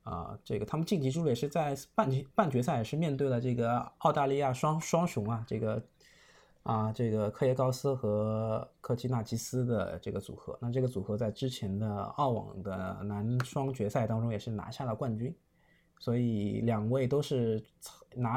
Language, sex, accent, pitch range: Chinese, male, native, 110-145 Hz